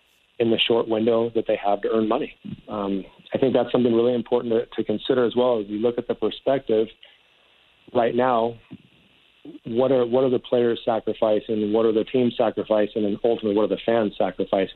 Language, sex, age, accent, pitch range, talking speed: English, male, 40-59, American, 105-120 Hz, 205 wpm